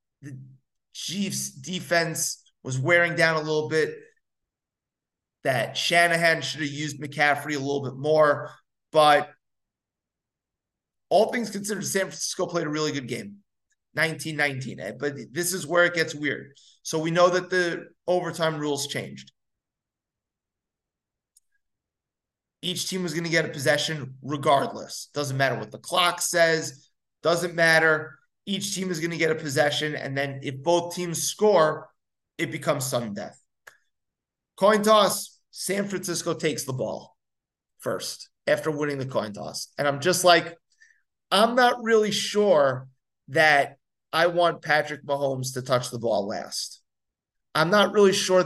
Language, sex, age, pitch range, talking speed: English, male, 30-49, 140-175 Hz, 145 wpm